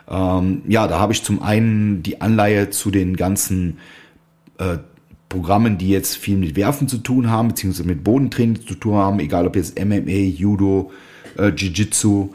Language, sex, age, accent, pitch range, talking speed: German, male, 30-49, German, 95-115 Hz, 165 wpm